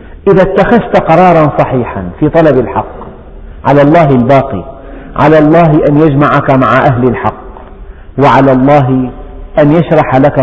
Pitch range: 125-170 Hz